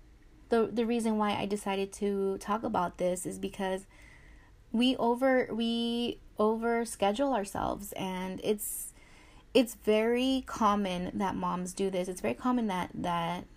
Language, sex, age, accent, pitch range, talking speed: English, female, 20-39, American, 185-225 Hz, 140 wpm